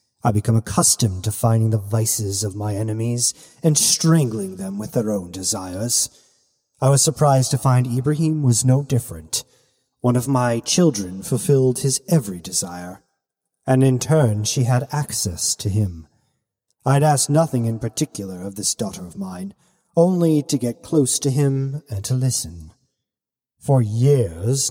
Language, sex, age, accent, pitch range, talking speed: English, male, 30-49, American, 110-135 Hz, 155 wpm